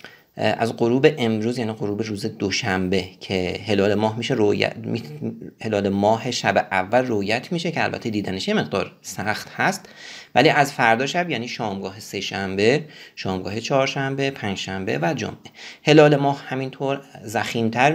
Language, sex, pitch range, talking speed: Persian, male, 105-135 Hz, 135 wpm